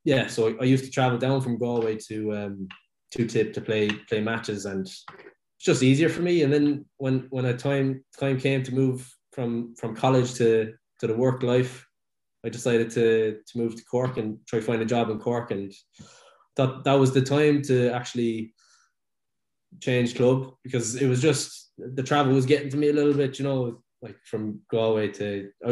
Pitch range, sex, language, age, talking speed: 115-135 Hz, male, English, 20-39, 200 wpm